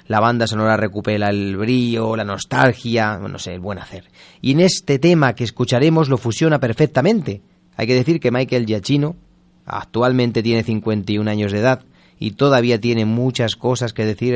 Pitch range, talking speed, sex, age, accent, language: 110-150 Hz, 170 wpm, male, 30-49, Spanish, Spanish